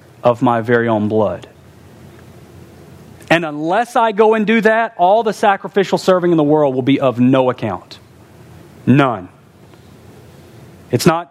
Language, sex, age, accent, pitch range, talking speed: English, male, 40-59, American, 115-165 Hz, 145 wpm